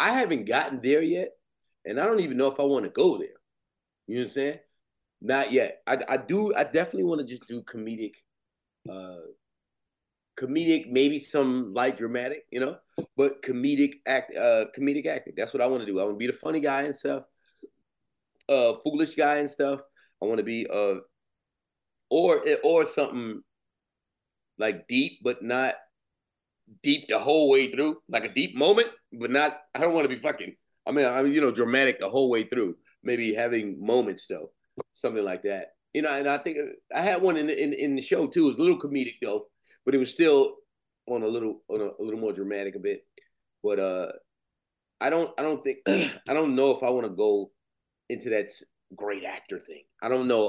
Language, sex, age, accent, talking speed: English, male, 30-49, American, 205 wpm